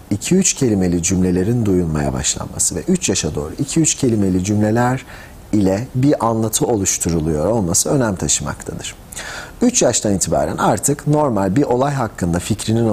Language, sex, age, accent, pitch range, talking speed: Turkish, male, 40-59, native, 95-135 Hz, 125 wpm